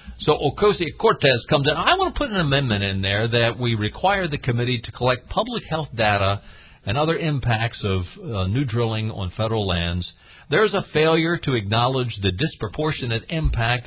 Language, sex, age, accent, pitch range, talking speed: English, male, 50-69, American, 110-155 Hz, 175 wpm